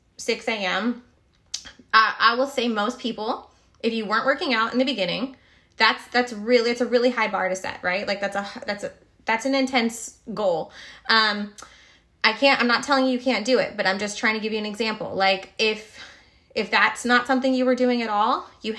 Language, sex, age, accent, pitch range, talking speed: English, female, 20-39, American, 205-260 Hz, 210 wpm